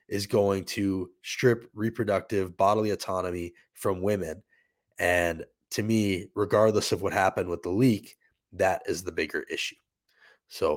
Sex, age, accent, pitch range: male, 20-39, American, 100-120 Hz